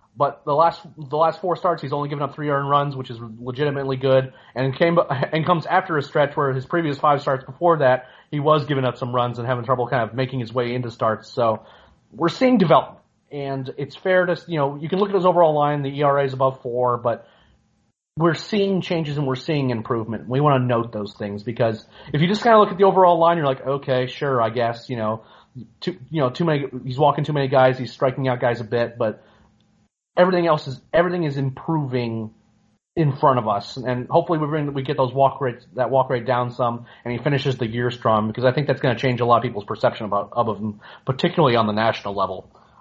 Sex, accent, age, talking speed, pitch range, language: male, American, 30-49, 240 wpm, 120-160 Hz, English